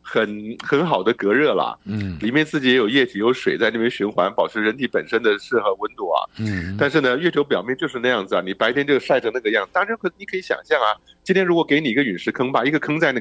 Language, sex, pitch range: Chinese, male, 115-155 Hz